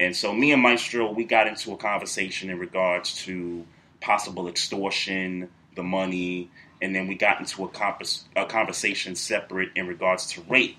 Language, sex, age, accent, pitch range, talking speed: English, male, 30-49, American, 90-120 Hz, 170 wpm